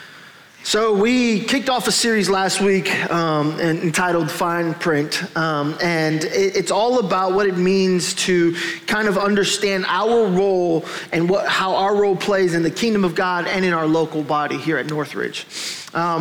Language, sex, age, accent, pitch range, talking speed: English, male, 20-39, American, 160-195 Hz, 165 wpm